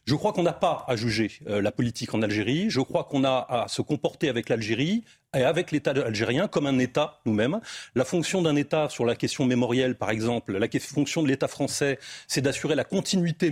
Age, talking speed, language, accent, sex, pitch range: 40-59, 220 wpm, French, French, male, 125-175 Hz